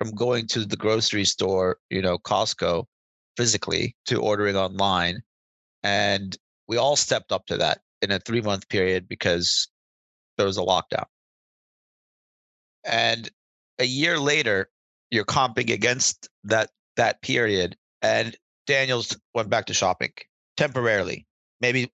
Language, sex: English, male